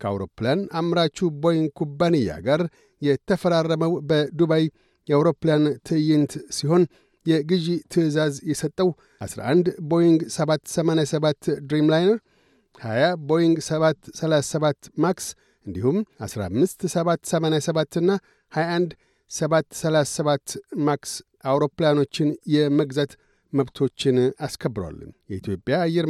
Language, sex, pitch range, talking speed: Amharic, male, 145-170 Hz, 75 wpm